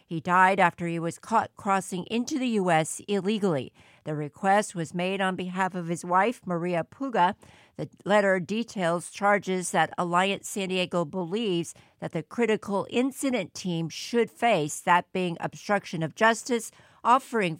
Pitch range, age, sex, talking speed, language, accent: 165-220 Hz, 50-69, female, 150 wpm, English, American